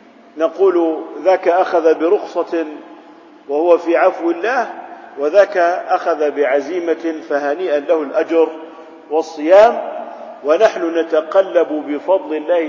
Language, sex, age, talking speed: Arabic, male, 50-69, 90 wpm